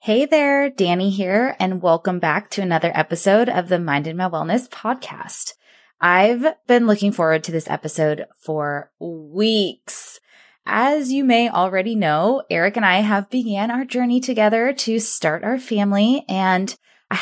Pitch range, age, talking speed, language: 175-245 Hz, 20-39, 155 wpm, English